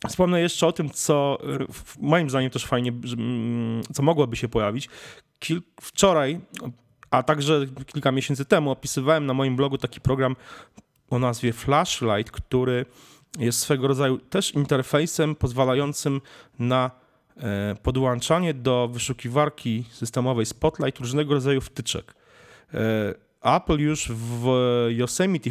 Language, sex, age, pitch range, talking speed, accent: Polish, male, 30-49, 115-150 Hz, 115 wpm, native